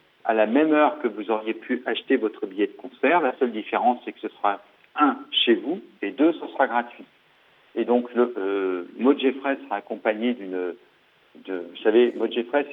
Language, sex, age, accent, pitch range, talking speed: French, male, 50-69, French, 105-150 Hz, 190 wpm